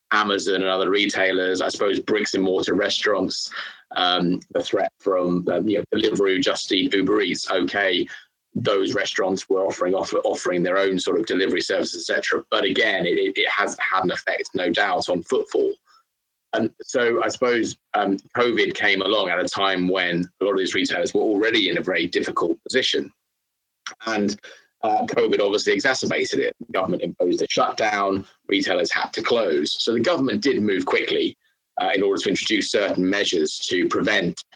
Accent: British